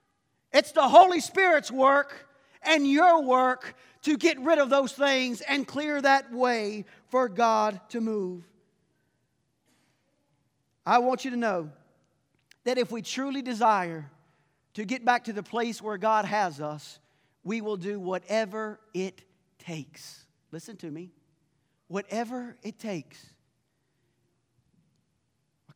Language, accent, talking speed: English, American, 130 wpm